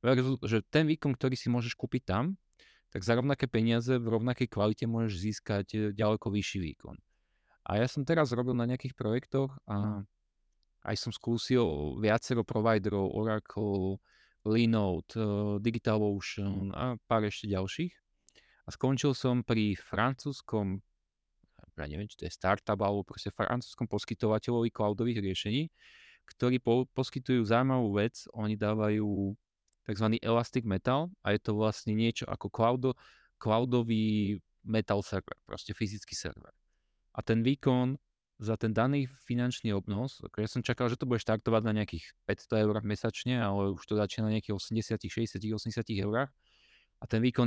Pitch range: 105-120 Hz